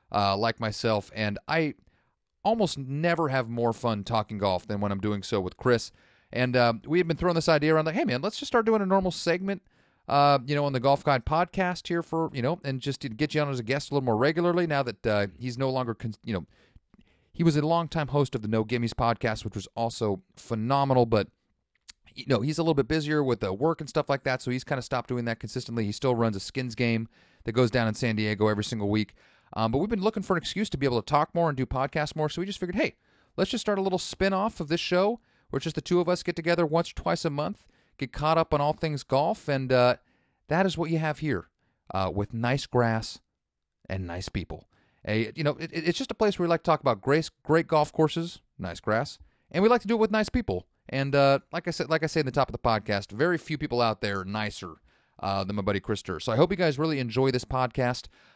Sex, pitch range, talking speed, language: male, 115-165 Hz, 265 wpm, English